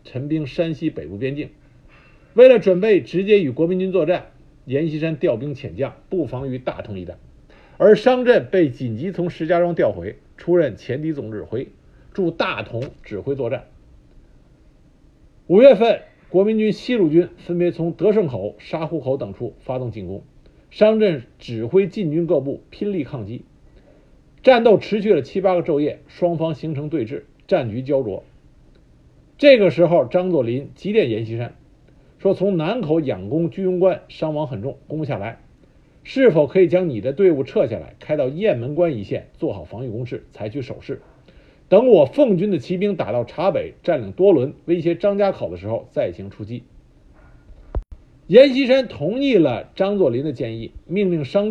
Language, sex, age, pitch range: Chinese, male, 50-69, 135-190 Hz